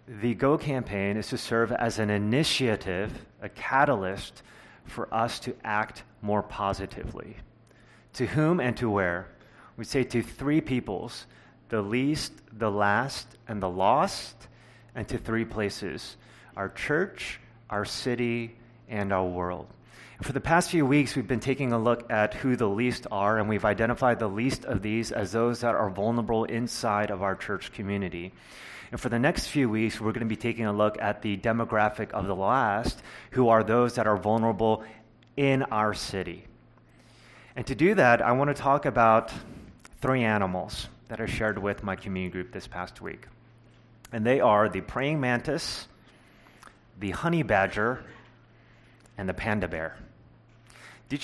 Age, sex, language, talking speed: 30-49, male, English, 165 wpm